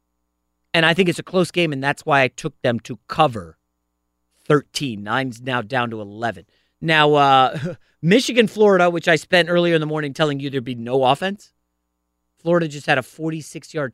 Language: English